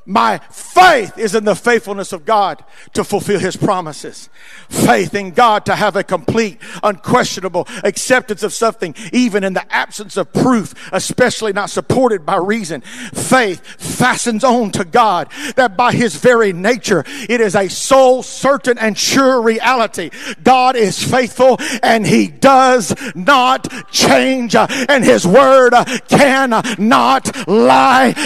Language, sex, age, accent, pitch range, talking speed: English, male, 50-69, American, 200-255 Hz, 140 wpm